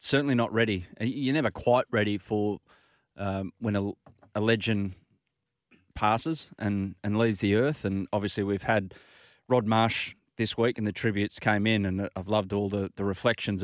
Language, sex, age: English, male, 30-49